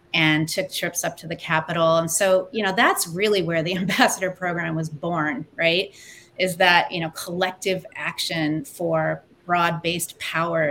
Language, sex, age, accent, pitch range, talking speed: English, female, 30-49, American, 165-200 Hz, 165 wpm